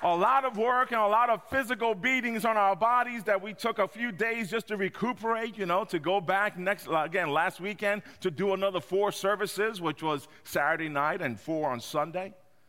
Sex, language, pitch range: male, English, 175-230 Hz